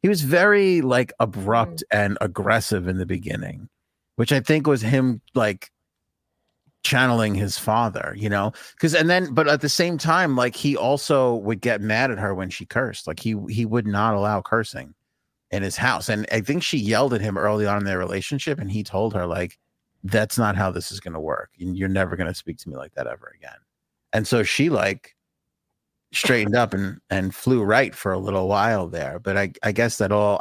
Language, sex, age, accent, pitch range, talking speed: English, male, 30-49, American, 100-130 Hz, 210 wpm